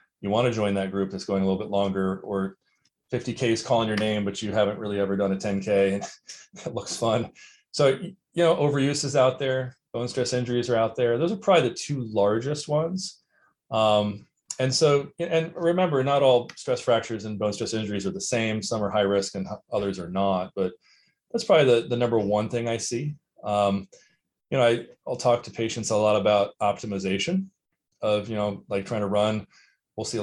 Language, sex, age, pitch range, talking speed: English, male, 30-49, 105-125 Hz, 210 wpm